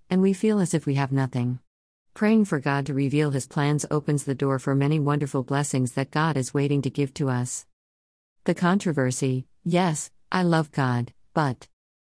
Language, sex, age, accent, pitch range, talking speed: English, female, 50-69, American, 135-170 Hz, 185 wpm